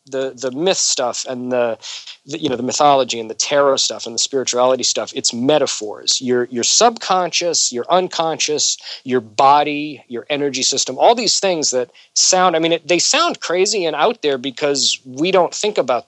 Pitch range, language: 125-175 Hz, English